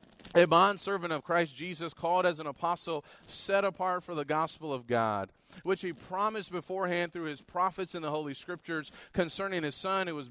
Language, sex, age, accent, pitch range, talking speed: English, male, 30-49, American, 145-180 Hz, 190 wpm